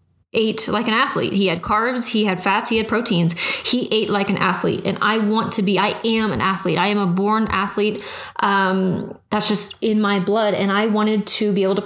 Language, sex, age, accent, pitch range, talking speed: English, female, 20-39, American, 195-230 Hz, 230 wpm